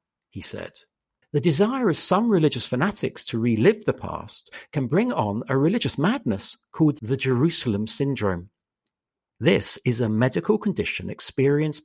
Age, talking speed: 60-79, 140 wpm